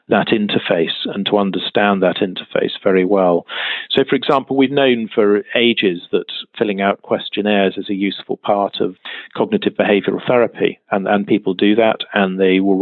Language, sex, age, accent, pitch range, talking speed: English, male, 40-59, British, 95-115 Hz, 170 wpm